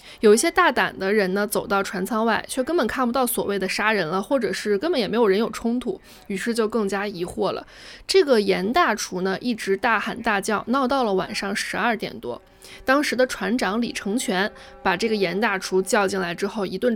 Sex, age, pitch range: female, 20-39, 200-255 Hz